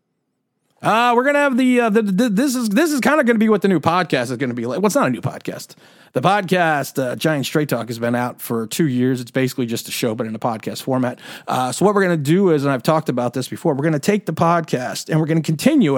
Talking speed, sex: 300 wpm, male